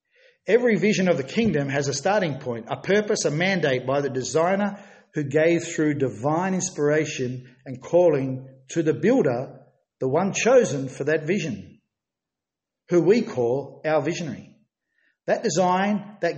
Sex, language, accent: male, English, Australian